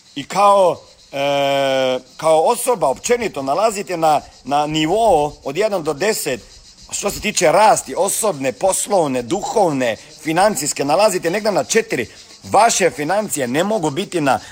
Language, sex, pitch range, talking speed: Croatian, male, 140-195 Hz, 130 wpm